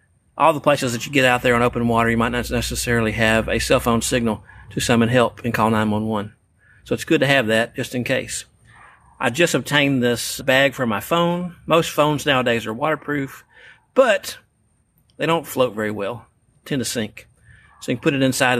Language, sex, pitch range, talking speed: English, male, 115-150 Hz, 205 wpm